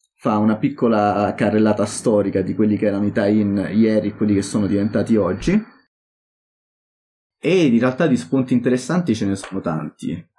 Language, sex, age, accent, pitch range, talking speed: Italian, male, 30-49, native, 100-125 Hz, 170 wpm